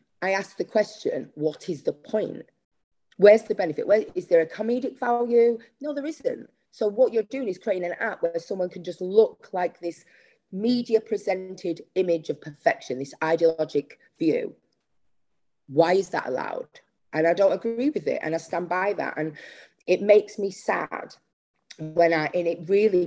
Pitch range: 165-225 Hz